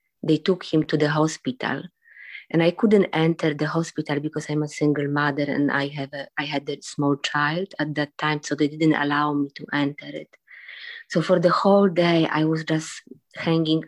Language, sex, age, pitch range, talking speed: English, female, 20-39, 150-170 Hz, 200 wpm